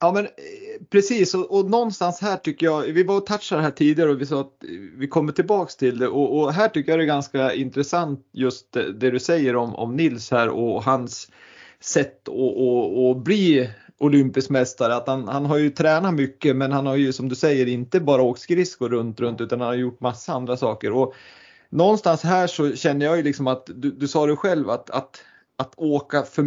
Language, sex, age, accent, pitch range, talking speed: Swedish, male, 30-49, native, 130-160 Hz, 215 wpm